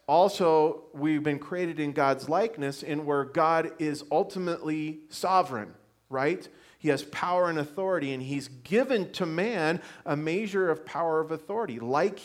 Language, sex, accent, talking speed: English, male, American, 150 wpm